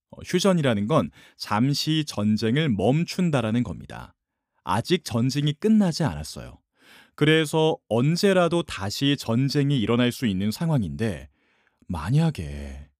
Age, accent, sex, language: 30-49, native, male, Korean